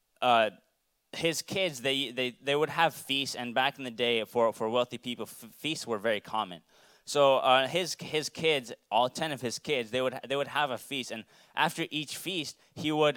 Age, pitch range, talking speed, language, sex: 20-39, 120-145 Hz, 210 wpm, English, male